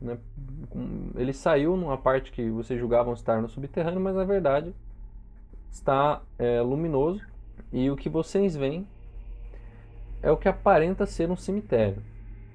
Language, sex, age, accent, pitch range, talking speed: Portuguese, male, 20-39, Brazilian, 110-145 Hz, 135 wpm